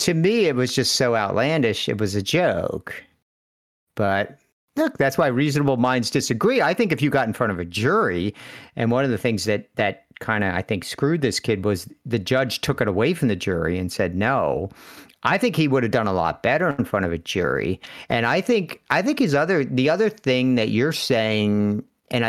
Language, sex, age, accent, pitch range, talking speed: English, male, 50-69, American, 105-135 Hz, 220 wpm